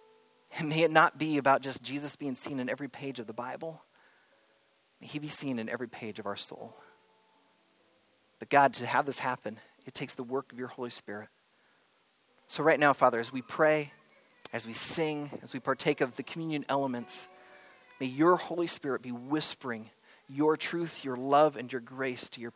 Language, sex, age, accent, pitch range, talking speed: English, male, 30-49, American, 120-145 Hz, 190 wpm